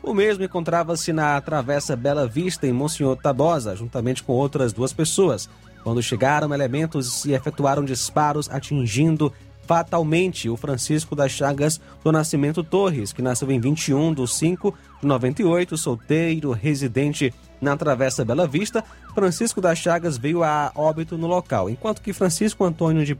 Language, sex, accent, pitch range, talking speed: Portuguese, male, Brazilian, 125-160 Hz, 145 wpm